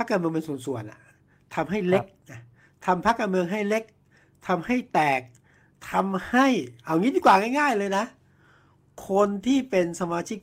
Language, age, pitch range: Thai, 60-79, 135-185 Hz